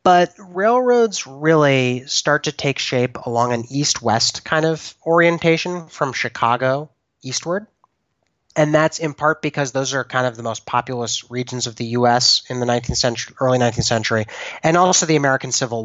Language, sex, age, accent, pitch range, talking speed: English, male, 30-49, American, 115-165 Hz, 165 wpm